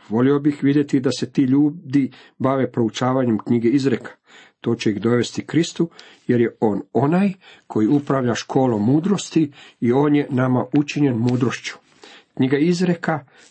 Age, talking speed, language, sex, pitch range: 50-69, 140 wpm, Croatian, male, 125-150 Hz